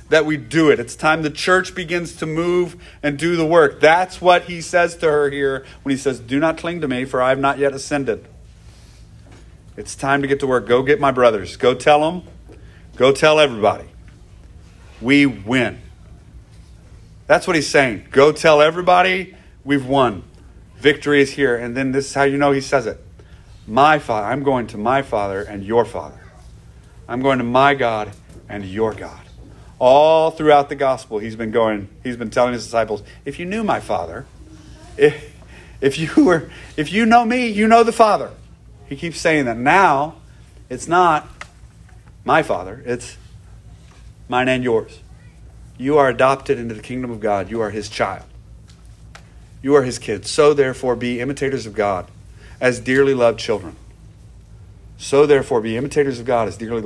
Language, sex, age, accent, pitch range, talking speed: English, male, 40-59, American, 110-150 Hz, 180 wpm